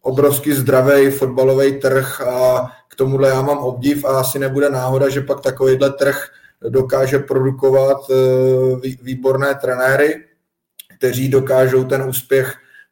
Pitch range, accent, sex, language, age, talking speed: 120-135 Hz, native, male, Czech, 20-39, 120 wpm